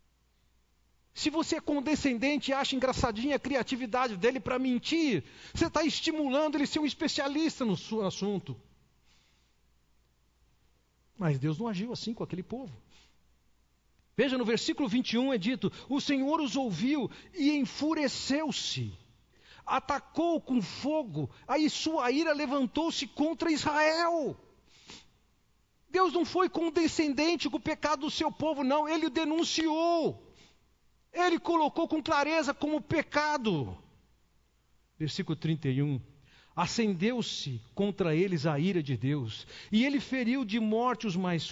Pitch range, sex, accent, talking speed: 195-305 Hz, male, Brazilian, 125 wpm